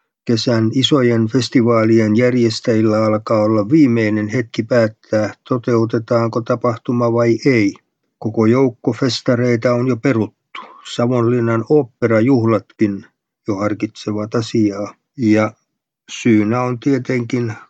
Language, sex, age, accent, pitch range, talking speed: Finnish, male, 50-69, native, 110-130 Hz, 95 wpm